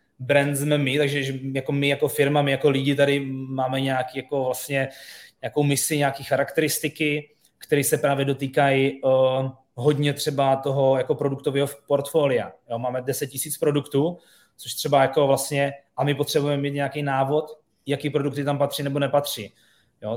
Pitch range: 130-145 Hz